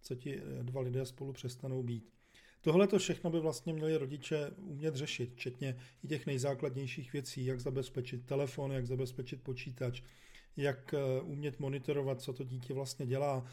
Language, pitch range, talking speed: Czech, 130-155 Hz, 155 wpm